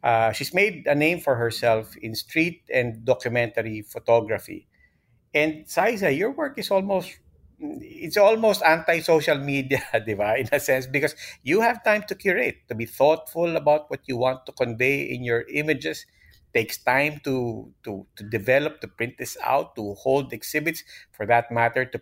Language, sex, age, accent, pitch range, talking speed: English, male, 50-69, Filipino, 110-150 Hz, 170 wpm